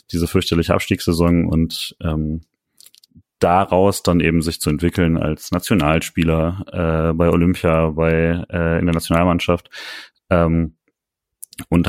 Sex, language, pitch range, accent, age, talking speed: male, German, 80-90 Hz, German, 30-49, 115 wpm